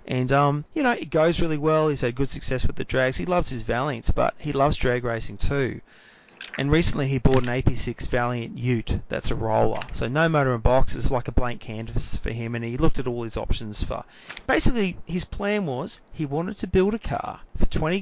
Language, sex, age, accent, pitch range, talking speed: English, male, 30-49, Australian, 115-155 Hz, 225 wpm